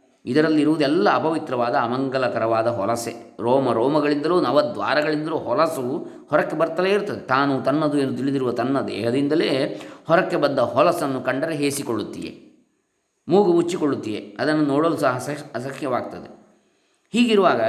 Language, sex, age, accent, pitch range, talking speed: Kannada, male, 20-39, native, 140-185 Hz, 100 wpm